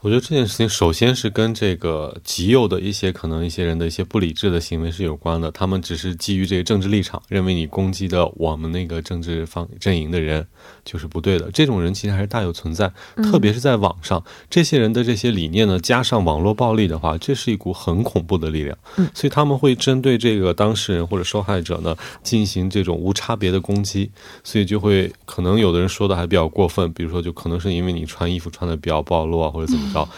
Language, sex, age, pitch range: Korean, male, 20-39, 85-120 Hz